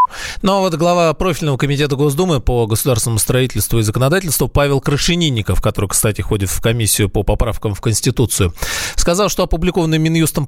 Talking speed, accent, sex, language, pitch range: 155 wpm, native, male, Russian, 110-150 Hz